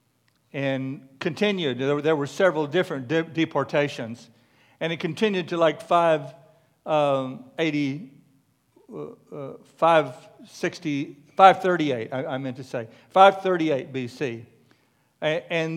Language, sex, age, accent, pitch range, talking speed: English, male, 60-79, American, 135-180 Hz, 115 wpm